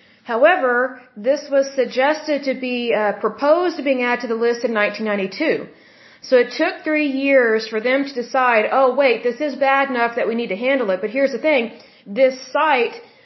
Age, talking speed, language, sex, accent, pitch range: 40-59, 195 wpm, Hindi, female, American, 225-275 Hz